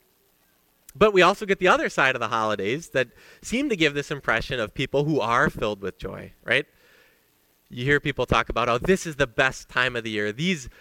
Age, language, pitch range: 20-39, English, 105-160 Hz